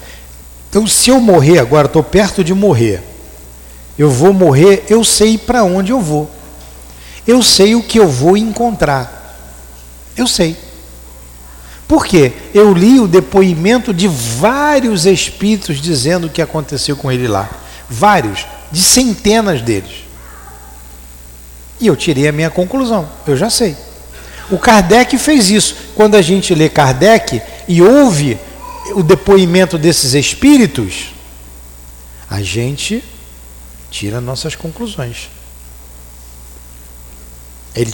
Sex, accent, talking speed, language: male, Brazilian, 120 wpm, Portuguese